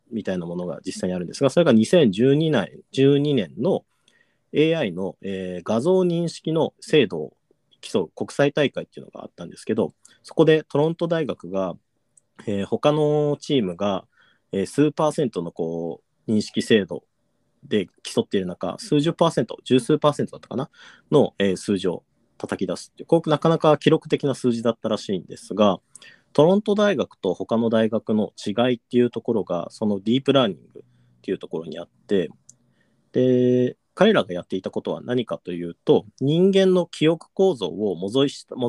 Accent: native